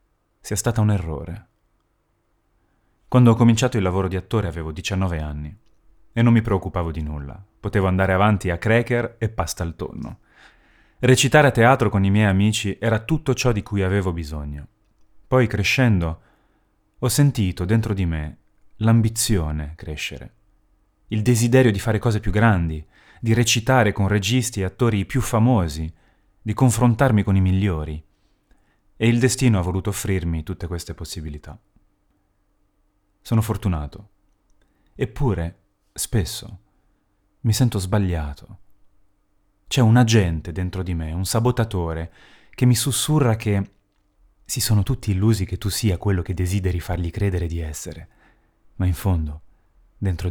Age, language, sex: 30-49, Italian, male